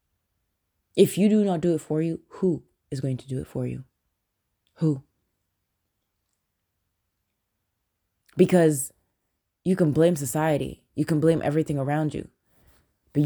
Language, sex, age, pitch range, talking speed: English, female, 20-39, 105-165 Hz, 130 wpm